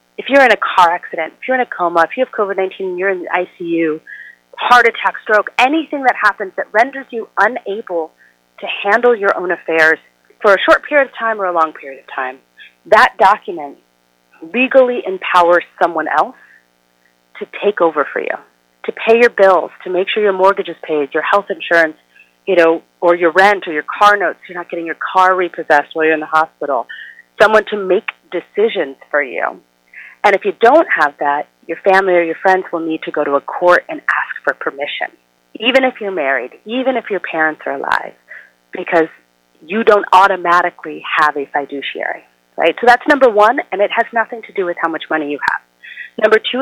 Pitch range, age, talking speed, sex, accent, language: 155-210 Hz, 40-59, 200 wpm, female, American, English